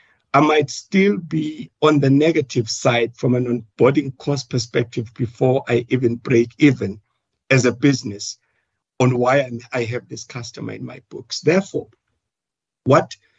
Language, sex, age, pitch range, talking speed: English, male, 60-79, 120-150 Hz, 145 wpm